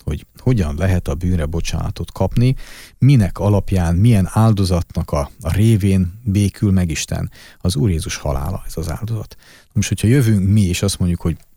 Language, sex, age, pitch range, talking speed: Hungarian, male, 40-59, 85-110 Hz, 165 wpm